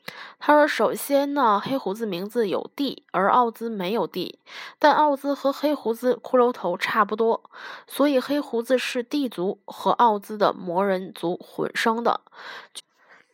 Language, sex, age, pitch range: Chinese, female, 20-39, 195-270 Hz